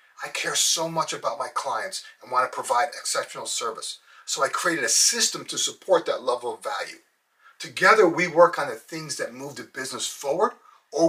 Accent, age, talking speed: American, 40-59, 195 wpm